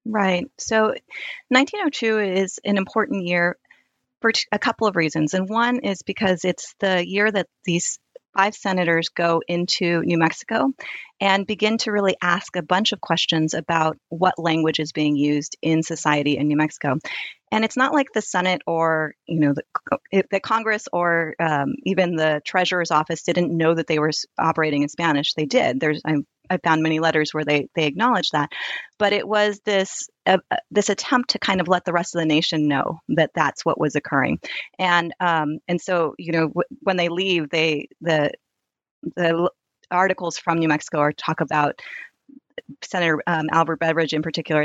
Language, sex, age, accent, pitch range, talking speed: English, female, 30-49, American, 155-190 Hz, 180 wpm